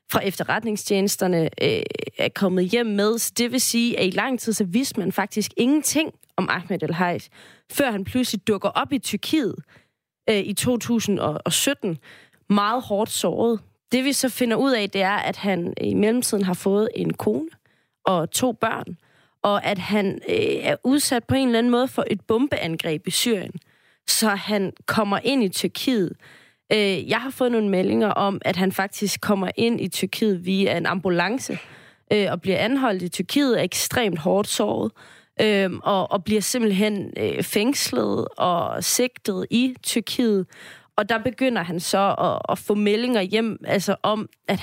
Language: Danish